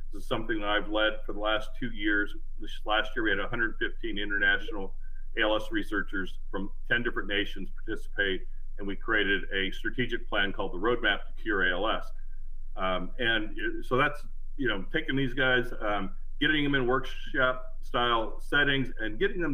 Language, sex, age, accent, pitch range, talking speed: English, male, 40-59, American, 105-130 Hz, 170 wpm